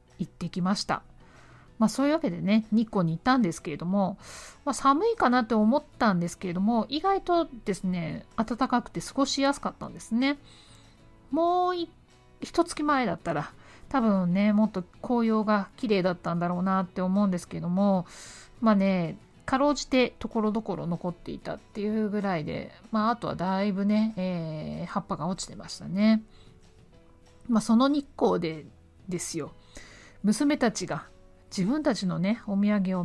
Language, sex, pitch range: Japanese, female, 175-235 Hz